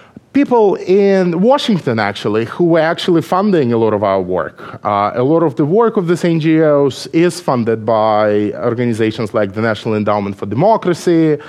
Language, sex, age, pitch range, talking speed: English, male, 30-49, 125-170 Hz, 165 wpm